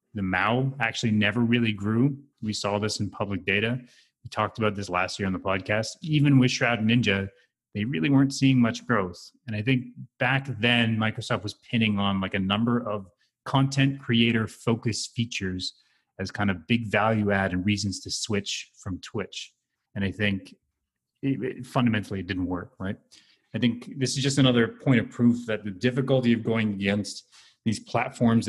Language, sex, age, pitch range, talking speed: English, male, 30-49, 95-120 Hz, 180 wpm